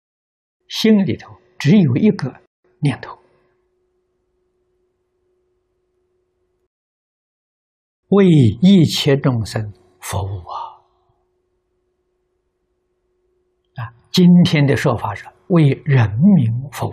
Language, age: Chinese, 60-79